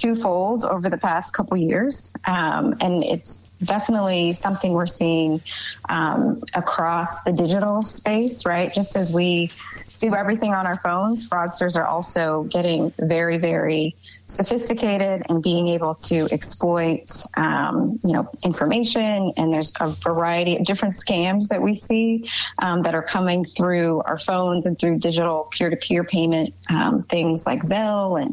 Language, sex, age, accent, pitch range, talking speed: English, female, 20-39, American, 165-200 Hz, 150 wpm